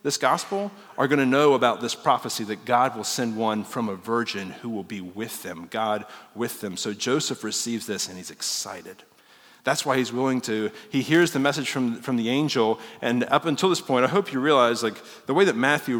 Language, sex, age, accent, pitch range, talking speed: English, male, 40-59, American, 110-140 Hz, 220 wpm